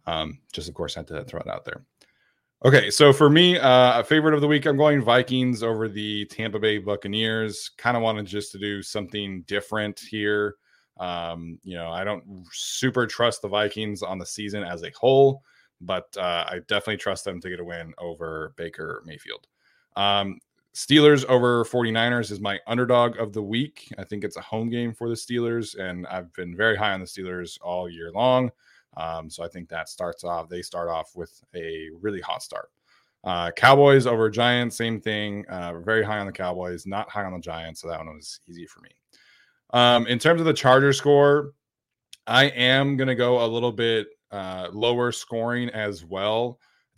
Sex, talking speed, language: male, 200 wpm, English